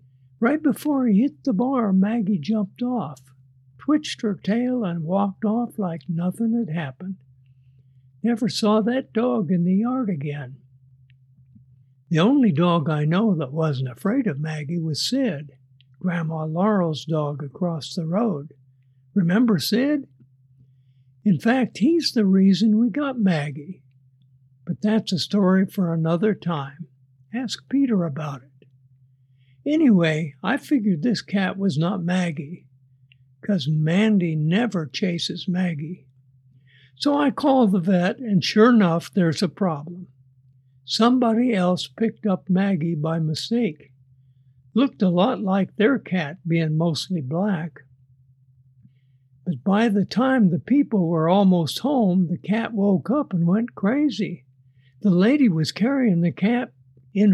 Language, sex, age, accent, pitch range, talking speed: English, male, 60-79, American, 135-215 Hz, 135 wpm